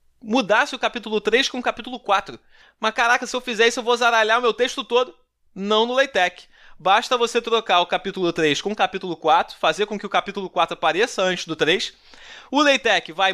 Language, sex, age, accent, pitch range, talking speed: Portuguese, male, 20-39, Brazilian, 190-245 Hz, 210 wpm